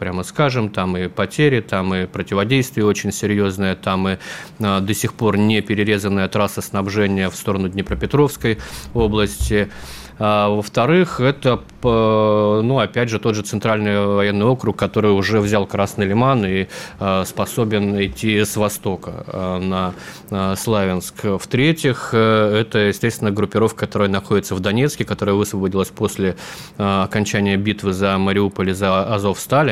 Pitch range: 100-110 Hz